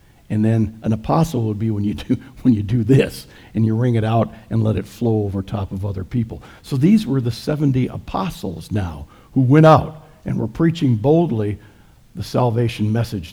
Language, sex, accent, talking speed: English, male, American, 200 wpm